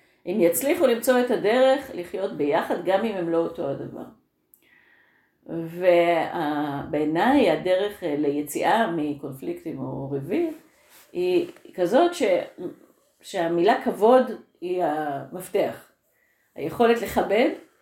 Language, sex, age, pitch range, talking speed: Hebrew, female, 30-49, 165-260 Hz, 95 wpm